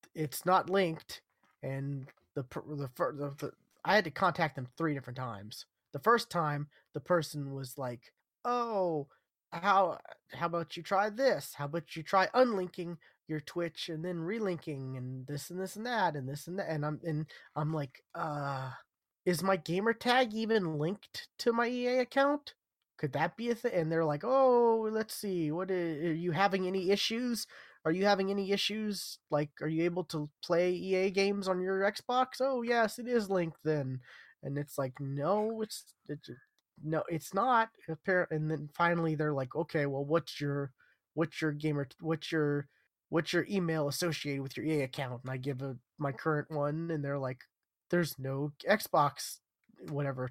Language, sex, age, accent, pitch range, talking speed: English, male, 20-39, American, 145-195 Hz, 180 wpm